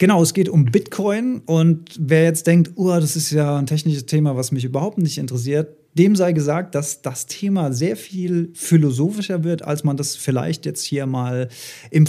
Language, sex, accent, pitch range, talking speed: German, male, German, 140-170 Hz, 190 wpm